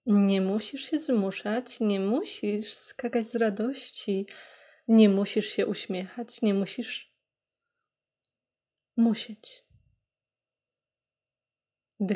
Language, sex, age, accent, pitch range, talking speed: Polish, female, 20-39, native, 195-245 Hz, 85 wpm